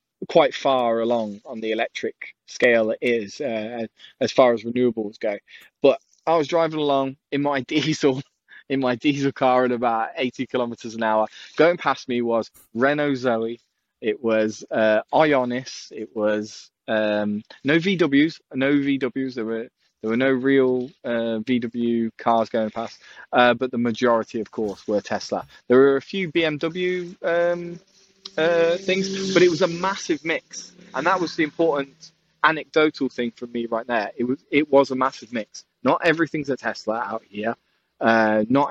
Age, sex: 20-39, male